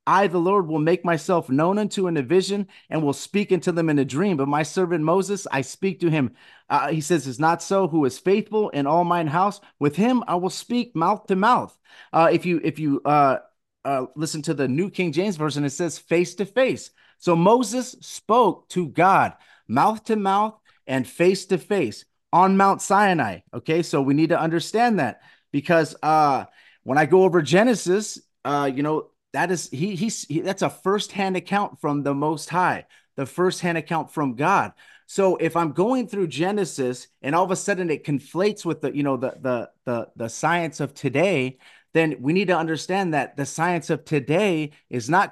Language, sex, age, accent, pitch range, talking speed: English, male, 30-49, American, 150-195 Hz, 205 wpm